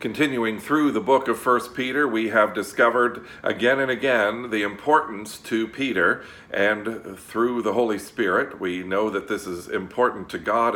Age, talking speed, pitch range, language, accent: 50-69, 165 wpm, 100-125 Hz, English, American